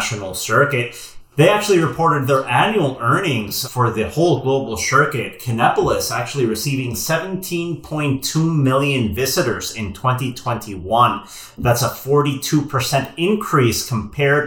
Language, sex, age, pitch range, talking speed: English, male, 30-49, 120-155 Hz, 115 wpm